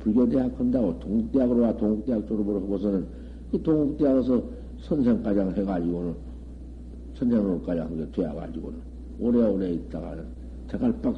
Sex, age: male, 60-79